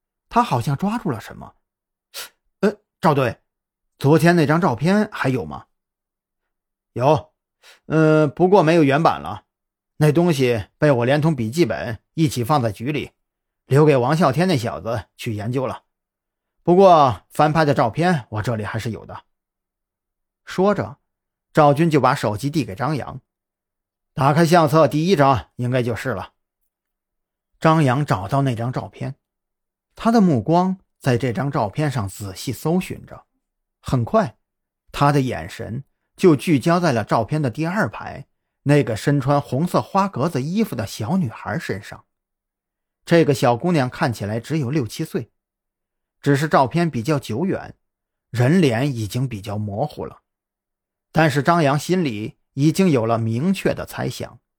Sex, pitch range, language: male, 110-160 Hz, Chinese